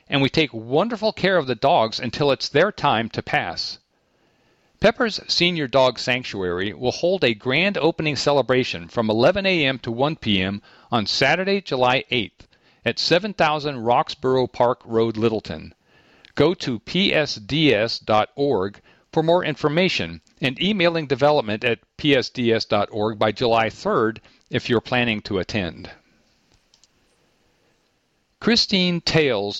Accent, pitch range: American, 110-160 Hz